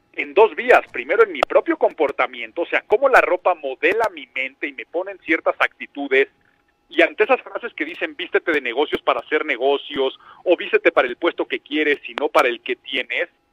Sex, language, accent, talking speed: male, Spanish, Mexican, 205 wpm